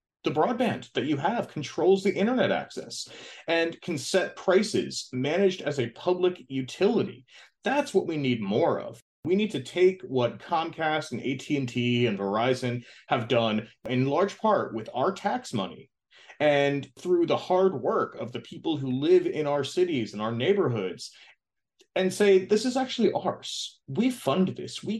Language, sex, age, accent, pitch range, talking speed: English, male, 30-49, American, 120-190 Hz, 165 wpm